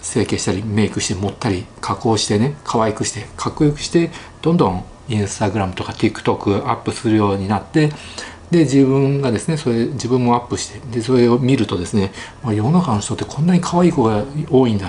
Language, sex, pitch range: Japanese, male, 105-145 Hz